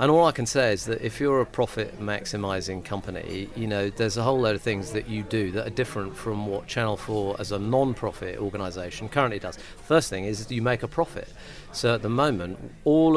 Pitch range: 100-120 Hz